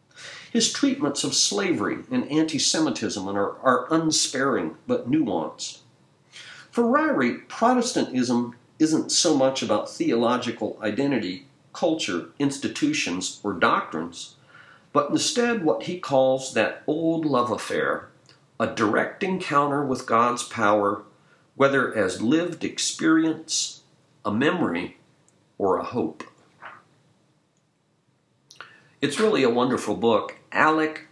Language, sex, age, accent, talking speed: English, male, 50-69, American, 100 wpm